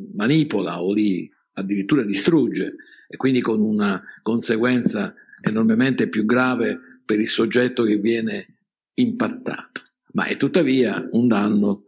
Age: 50-69